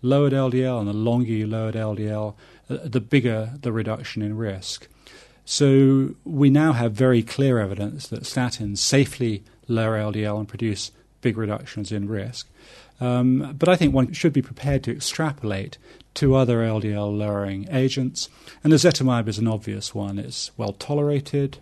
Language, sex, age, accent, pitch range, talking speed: English, male, 40-59, British, 110-135 Hz, 155 wpm